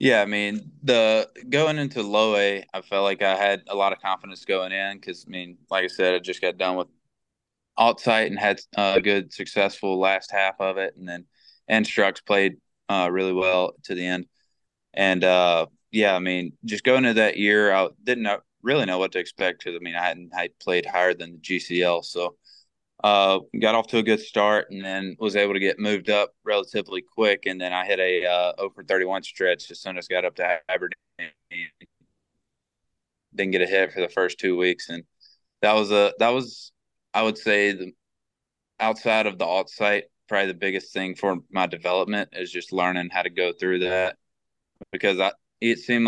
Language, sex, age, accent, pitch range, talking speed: English, male, 20-39, American, 90-105 Hz, 205 wpm